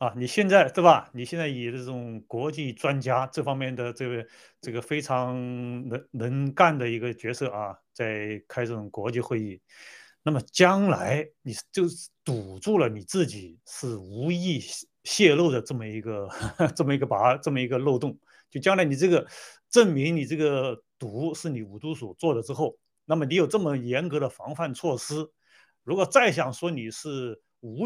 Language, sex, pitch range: Chinese, male, 110-150 Hz